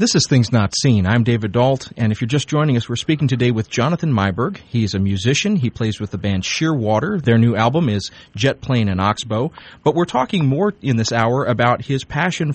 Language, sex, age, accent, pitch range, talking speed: English, male, 30-49, American, 105-135 Hz, 225 wpm